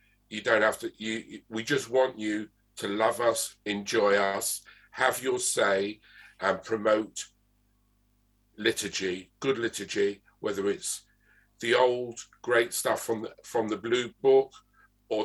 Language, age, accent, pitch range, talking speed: English, 50-69, British, 100-115 Hz, 140 wpm